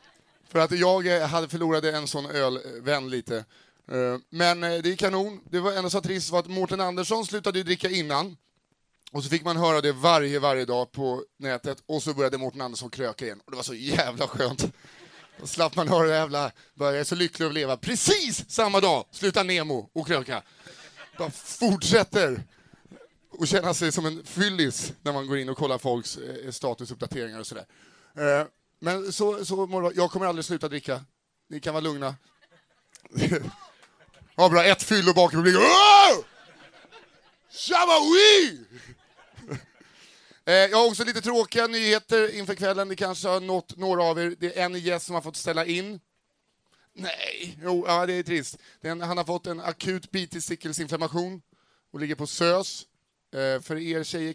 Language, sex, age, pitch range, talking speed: Swedish, male, 30-49, 145-185 Hz, 165 wpm